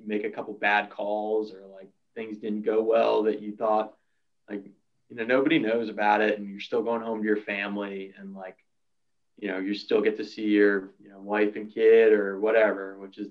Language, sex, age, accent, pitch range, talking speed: English, male, 20-39, American, 100-110 Hz, 215 wpm